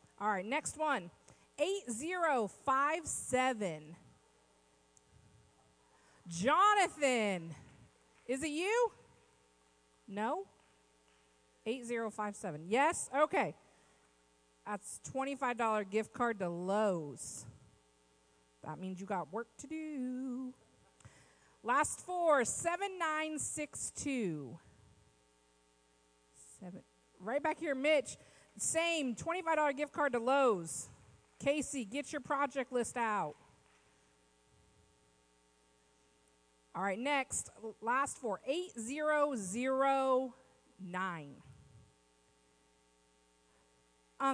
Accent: American